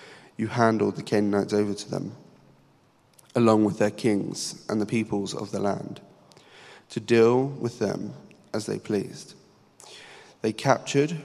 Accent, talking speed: British, 140 wpm